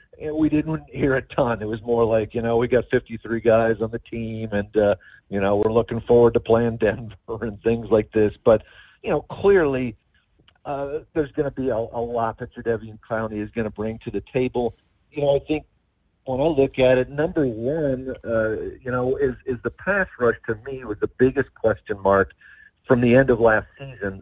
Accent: American